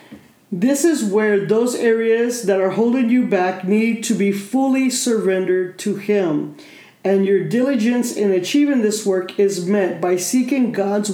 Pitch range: 190-230 Hz